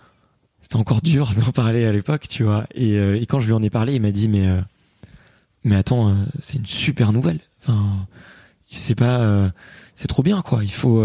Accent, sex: French, male